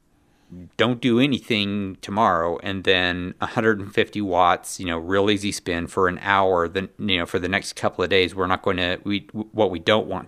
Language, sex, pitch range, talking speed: English, male, 90-110 Hz, 200 wpm